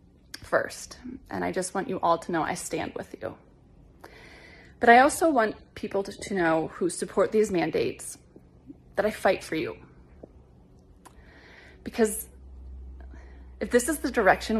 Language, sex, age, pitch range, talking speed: English, female, 30-49, 170-250 Hz, 150 wpm